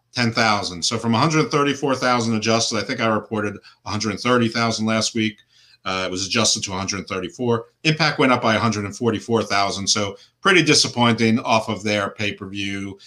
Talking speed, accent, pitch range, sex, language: 140 wpm, American, 105-145 Hz, male, English